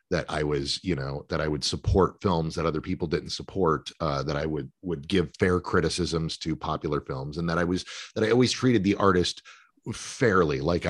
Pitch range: 80-105 Hz